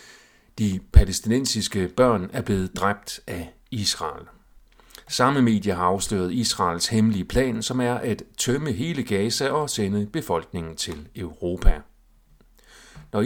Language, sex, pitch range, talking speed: Danish, male, 95-120 Hz, 120 wpm